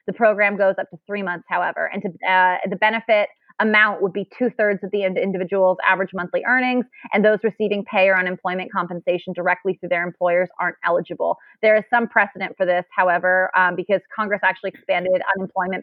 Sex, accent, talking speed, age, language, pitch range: female, American, 180 wpm, 20-39, English, 180-205 Hz